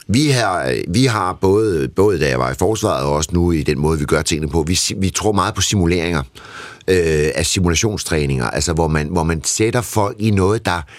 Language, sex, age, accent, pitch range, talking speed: Danish, male, 60-79, native, 80-105 Hz, 220 wpm